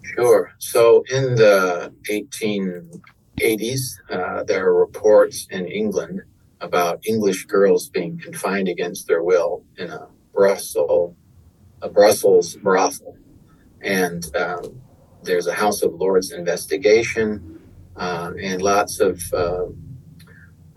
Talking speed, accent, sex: 110 wpm, American, male